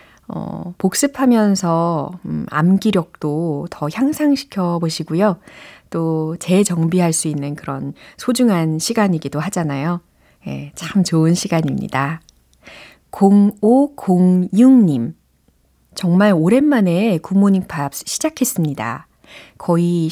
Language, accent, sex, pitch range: Korean, native, female, 155-215 Hz